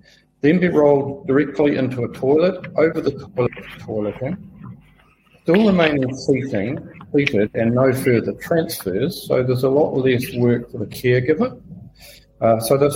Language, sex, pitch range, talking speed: English, male, 110-135 Hz, 140 wpm